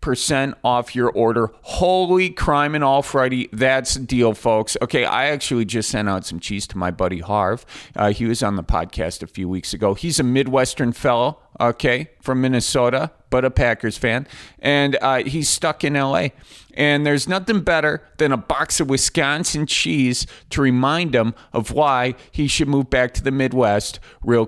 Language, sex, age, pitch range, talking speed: English, male, 40-59, 110-145 Hz, 180 wpm